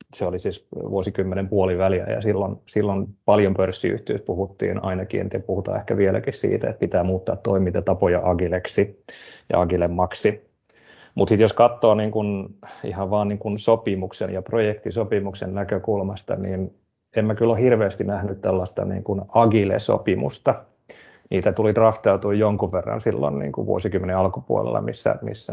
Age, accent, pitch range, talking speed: 30-49, native, 95-105 Hz, 140 wpm